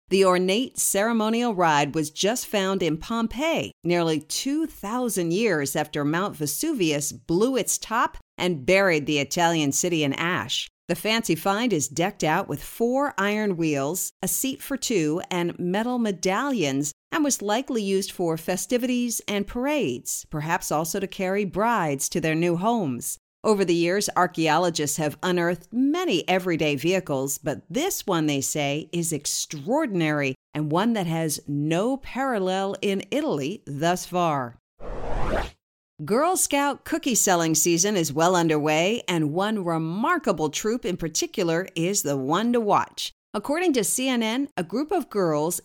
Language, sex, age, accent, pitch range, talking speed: English, female, 50-69, American, 160-230 Hz, 145 wpm